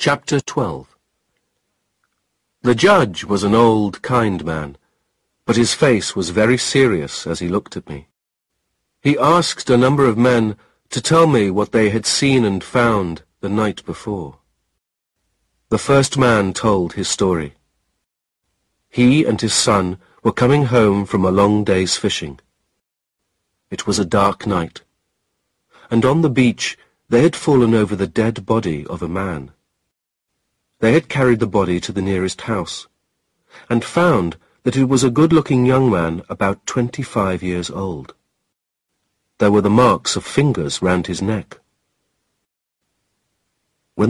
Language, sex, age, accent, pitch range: Chinese, male, 40-59, British, 95-125 Hz